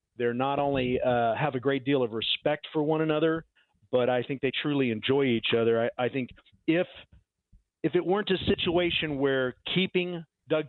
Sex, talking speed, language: male, 185 wpm, English